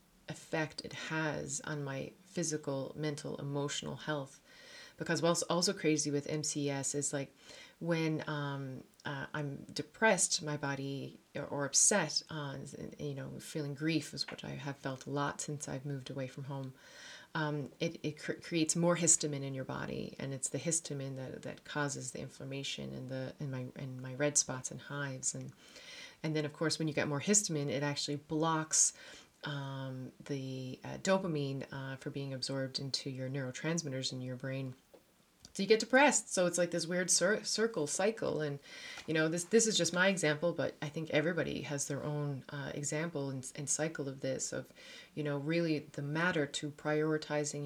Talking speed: 185 wpm